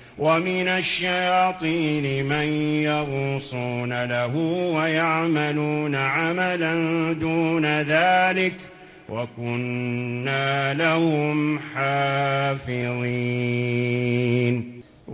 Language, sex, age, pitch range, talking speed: English, male, 40-59, 125-160 Hz, 50 wpm